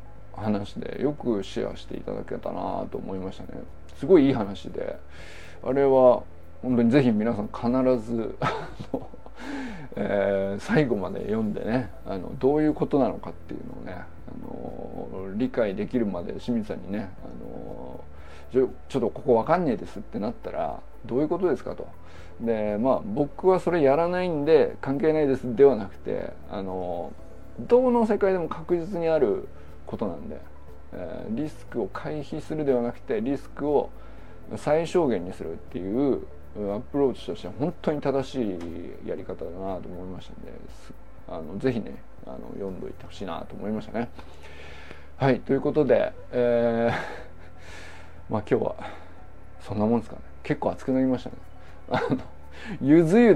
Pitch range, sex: 90-145 Hz, male